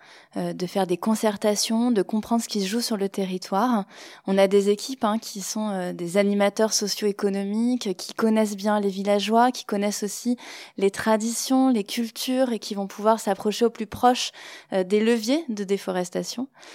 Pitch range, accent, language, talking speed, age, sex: 195-240 Hz, French, French, 180 wpm, 20-39, female